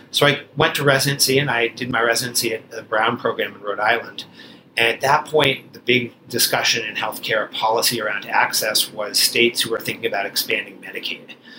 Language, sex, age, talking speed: English, male, 40-59, 190 wpm